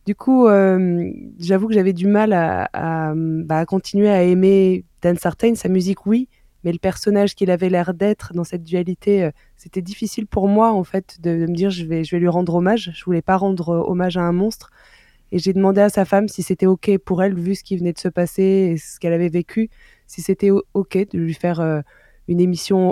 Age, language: 20-39, French